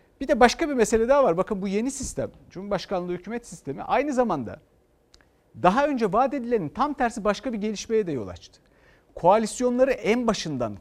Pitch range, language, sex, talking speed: 135-210 Hz, Turkish, male, 170 wpm